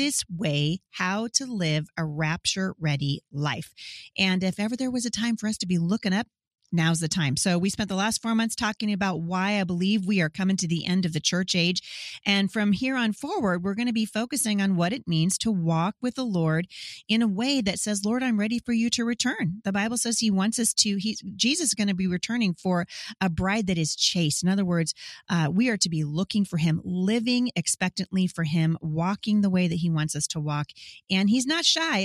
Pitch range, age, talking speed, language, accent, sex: 175-220 Hz, 30-49, 230 wpm, English, American, female